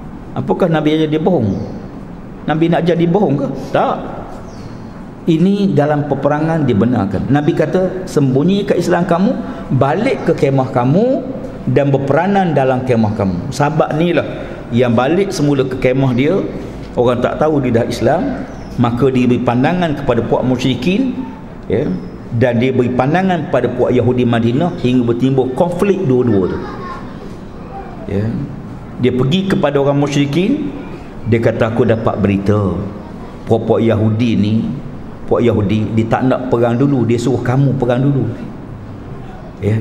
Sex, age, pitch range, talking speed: male, 50-69, 120-155 Hz, 140 wpm